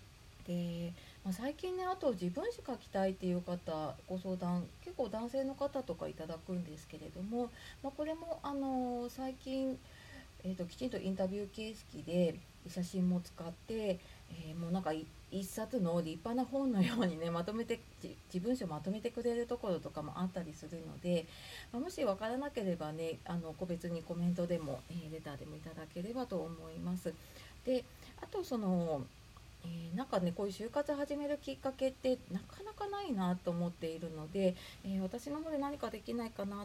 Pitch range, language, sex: 170-250 Hz, Japanese, female